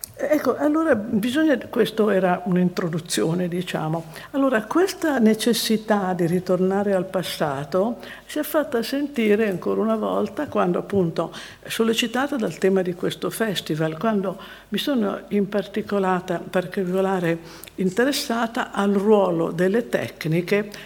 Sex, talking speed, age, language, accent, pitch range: female, 110 wpm, 50-69, Italian, native, 175-215 Hz